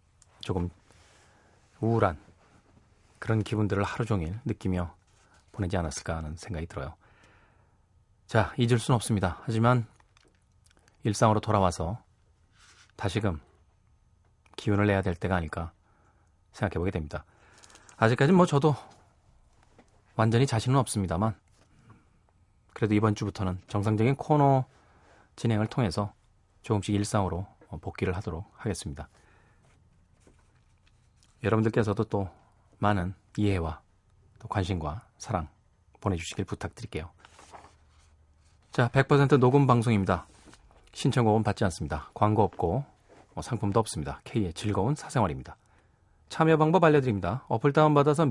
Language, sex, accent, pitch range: Korean, male, native, 95-115 Hz